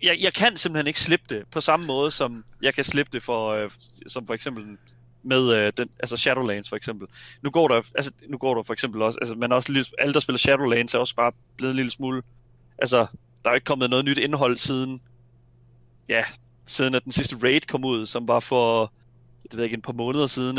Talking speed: 225 wpm